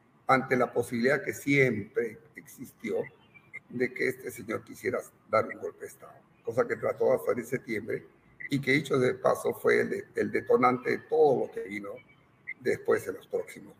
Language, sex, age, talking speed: Spanish, male, 50-69, 175 wpm